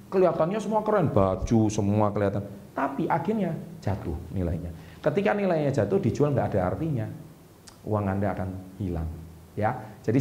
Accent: native